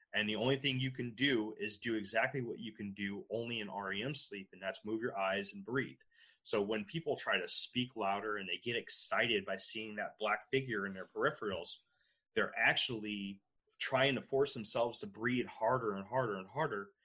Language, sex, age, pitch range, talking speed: English, male, 30-49, 100-130 Hz, 200 wpm